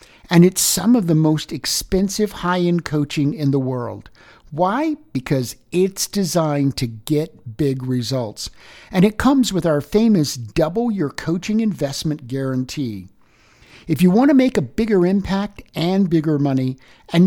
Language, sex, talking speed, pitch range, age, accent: English, male, 150 wpm, 135-185 Hz, 60-79, American